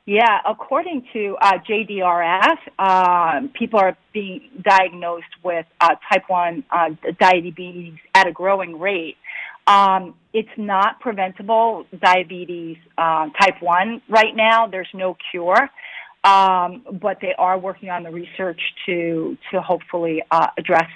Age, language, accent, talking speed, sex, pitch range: 40-59, English, American, 130 wpm, female, 175-215 Hz